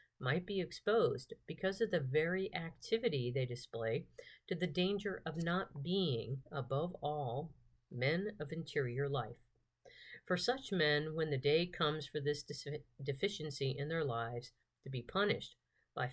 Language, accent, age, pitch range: English, American, 50-69, 130-170 Hz